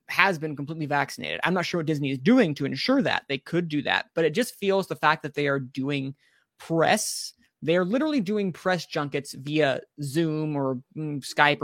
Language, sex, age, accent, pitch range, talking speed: English, male, 20-39, American, 150-185 Hz, 200 wpm